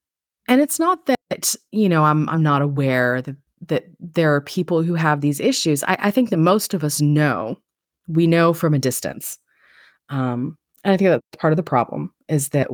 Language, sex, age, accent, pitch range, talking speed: English, female, 30-49, American, 140-180 Hz, 205 wpm